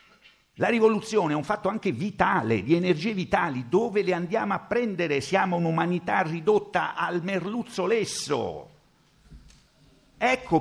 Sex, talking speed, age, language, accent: male, 125 wpm, 50-69, Italian, native